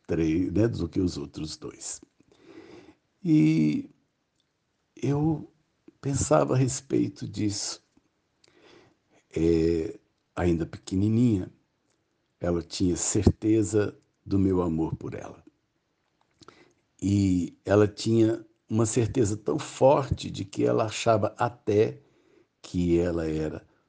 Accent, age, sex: Brazilian, 60-79, male